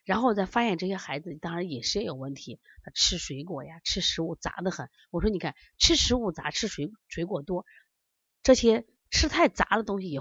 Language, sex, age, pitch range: Chinese, female, 30-49, 160-245 Hz